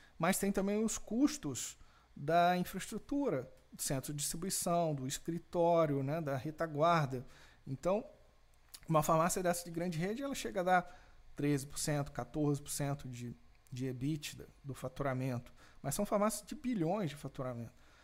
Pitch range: 135-180 Hz